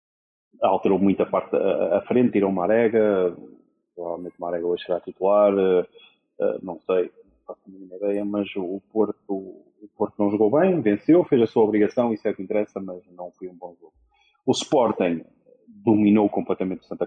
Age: 30-49